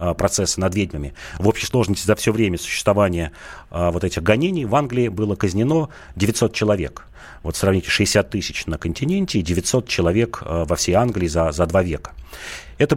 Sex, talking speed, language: male, 170 wpm, Russian